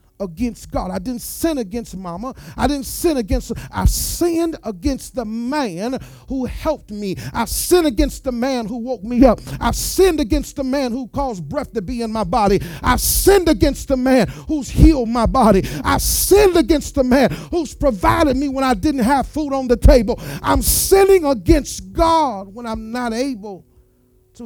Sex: male